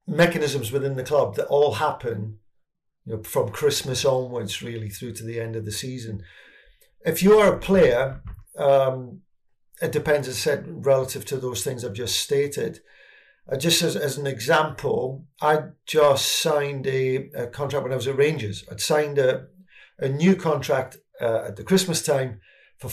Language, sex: English, male